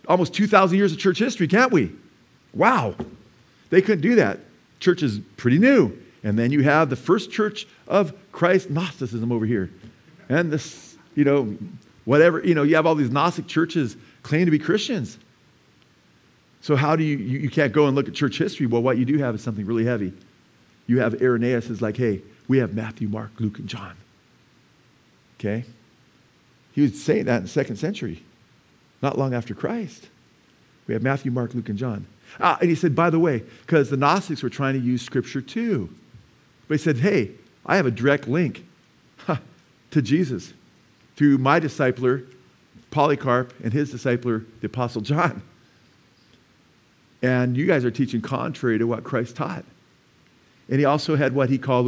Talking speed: 180 wpm